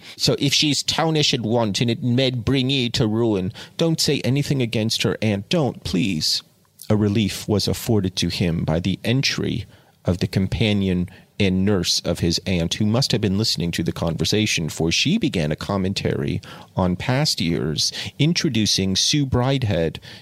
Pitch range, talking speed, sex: 95-125 Hz, 170 wpm, male